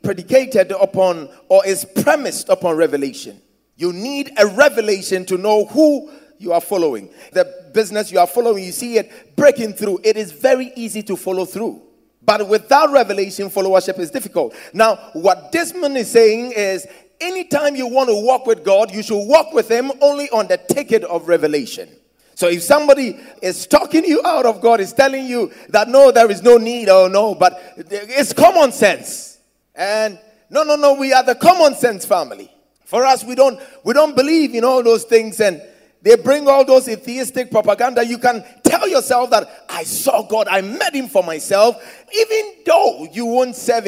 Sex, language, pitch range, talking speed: male, English, 205-280 Hz, 185 wpm